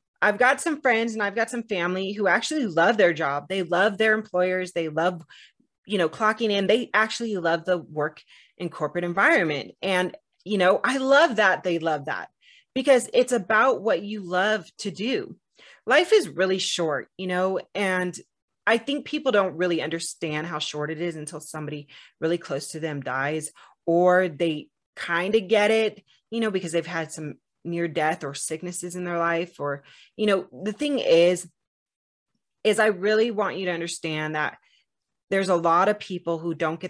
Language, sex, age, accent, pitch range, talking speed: English, female, 30-49, American, 160-200 Hz, 185 wpm